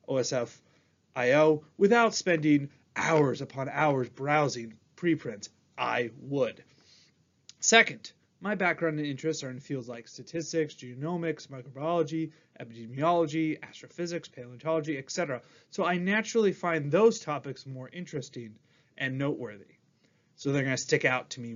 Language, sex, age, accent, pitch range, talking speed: English, male, 30-49, American, 135-185 Hz, 120 wpm